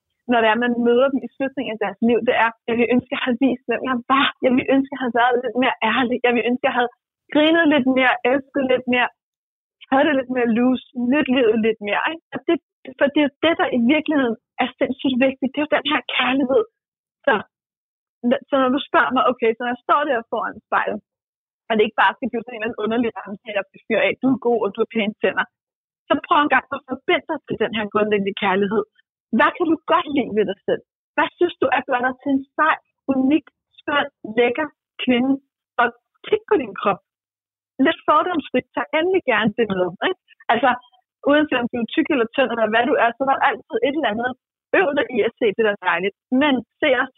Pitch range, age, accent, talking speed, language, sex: 235-290 Hz, 30-49, native, 225 wpm, Danish, female